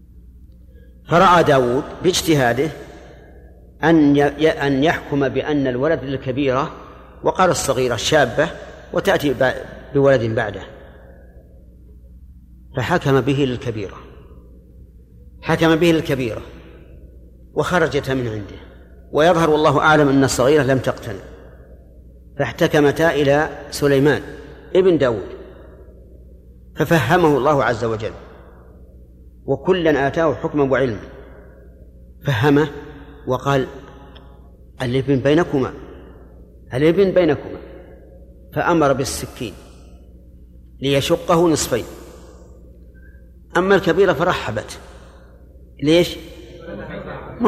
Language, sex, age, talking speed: Arabic, male, 50-69, 75 wpm